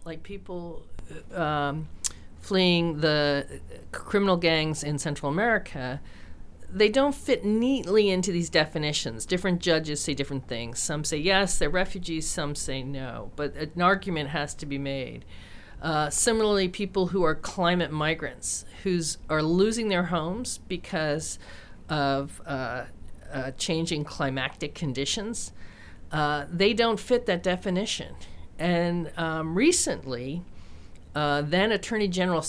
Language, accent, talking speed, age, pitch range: English, American, 125 wpm, 40-59, 140-190 Hz